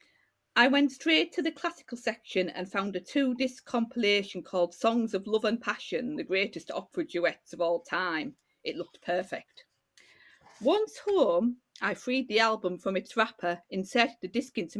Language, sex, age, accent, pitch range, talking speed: English, female, 40-59, British, 185-255 Hz, 165 wpm